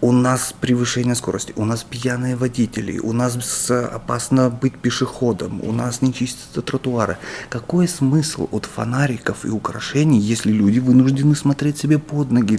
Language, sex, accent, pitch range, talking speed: Russian, male, native, 100-130 Hz, 150 wpm